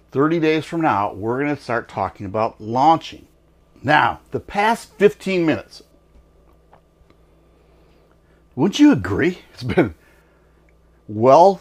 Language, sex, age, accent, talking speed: English, male, 50-69, American, 110 wpm